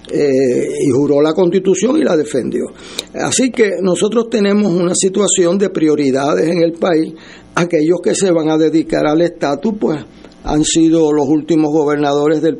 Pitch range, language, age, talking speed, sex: 145-180 Hz, Spanish, 60-79, 160 wpm, male